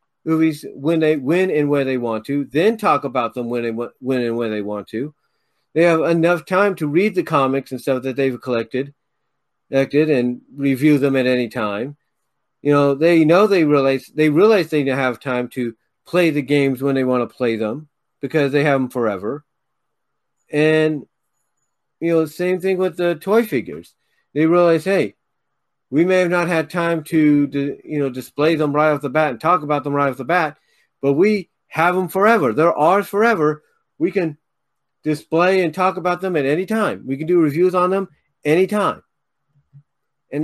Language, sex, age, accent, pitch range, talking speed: English, male, 40-59, American, 140-175 Hz, 190 wpm